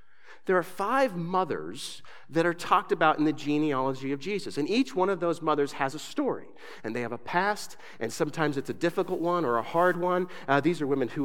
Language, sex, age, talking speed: English, male, 40-59, 225 wpm